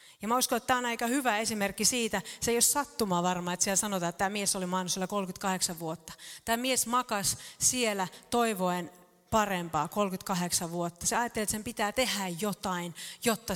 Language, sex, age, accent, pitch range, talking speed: Finnish, female, 30-49, native, 180-235 Hz, 180 wpm